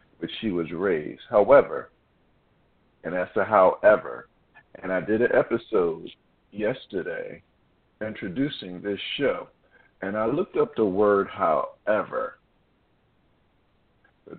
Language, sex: English, male